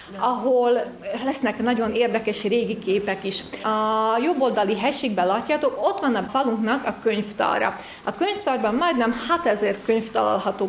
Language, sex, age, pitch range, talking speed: Hungarian, female, 30-49, 215-275 Hz, 130 wpm